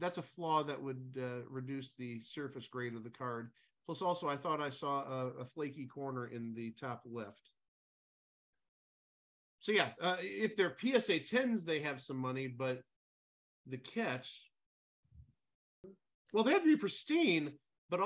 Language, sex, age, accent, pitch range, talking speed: English, male, 40-59, American, 125-175 Hz, 160 wpm